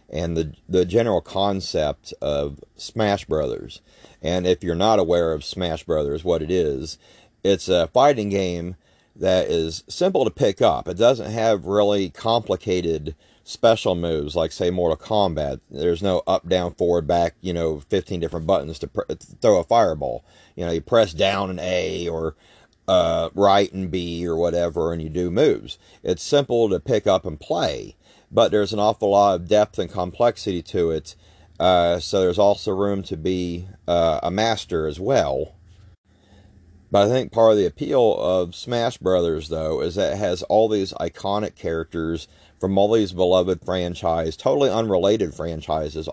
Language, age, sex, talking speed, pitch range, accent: English, 40-59, male, 170 wpm, 85-105 Hz, American